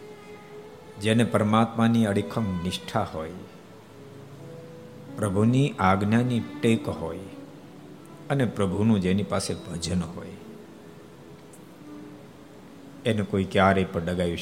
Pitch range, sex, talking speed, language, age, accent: 95-160 Hz, male, 80 wpm, Gujarati, 60-79, native